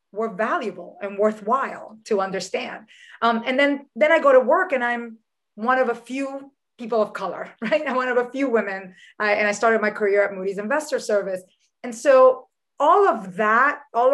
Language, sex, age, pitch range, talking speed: English, female, 30-49, 200-255 Hz, 190 wpm